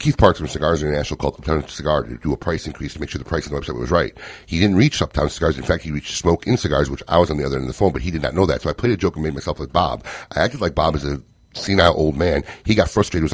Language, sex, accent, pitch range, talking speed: English, male, American, 75-90 Hz, 335 wpm